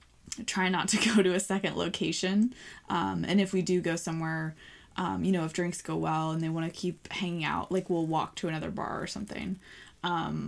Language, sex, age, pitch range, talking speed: English, female, 20-39, 165-190 Hz, 220 wpm